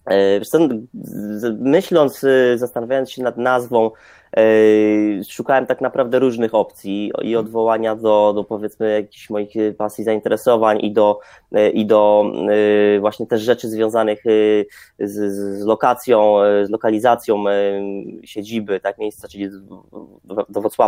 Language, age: Polish, 20-39